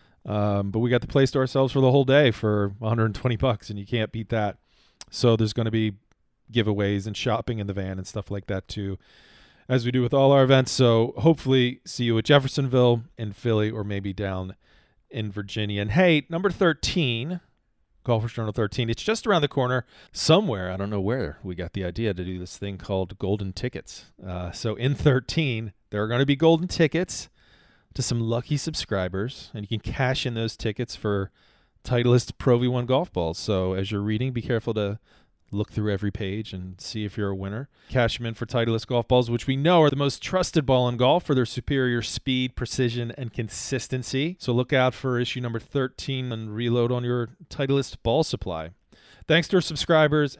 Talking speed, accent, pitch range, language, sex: 205 wpm, American, 105-135 Hz, English, male